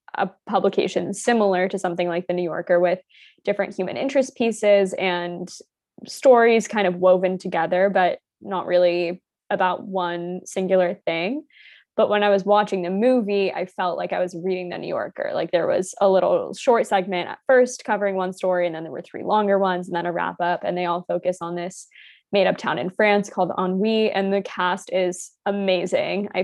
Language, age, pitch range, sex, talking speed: English, 10-29, 180-210 Hz, female, 195 wpm